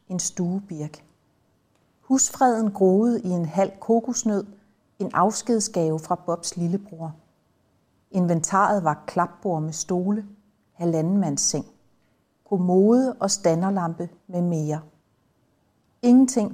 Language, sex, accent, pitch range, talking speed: Danish, female, native, 170-205 Hz, 100 wpm